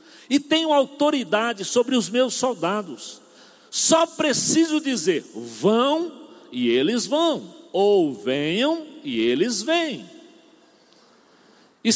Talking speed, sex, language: 100 wpm, male, Portuguese